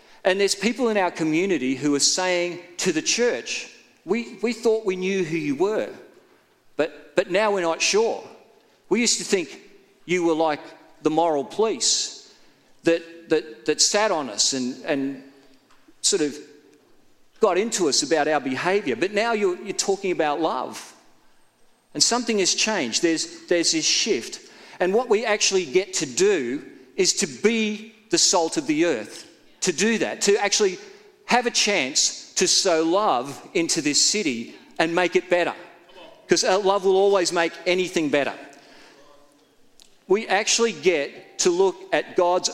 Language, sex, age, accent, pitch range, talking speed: English, male, 40-59, Australian, 155-225 Hz, 160 wpm